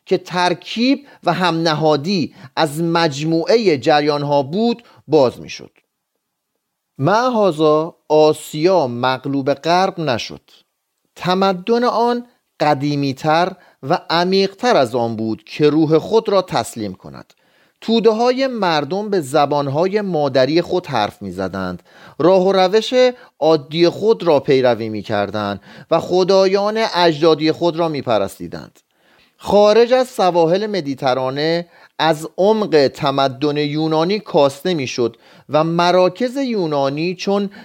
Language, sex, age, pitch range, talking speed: Persian, male, 40-59, 150-195 Hz, 110 wpm